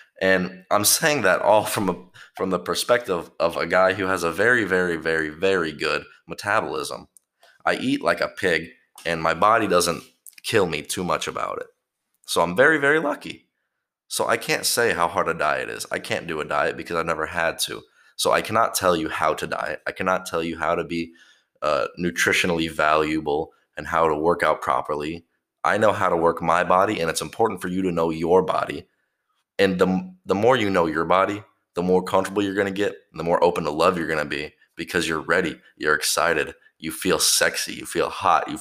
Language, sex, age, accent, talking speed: English, male, 20-39, American, 215 wpm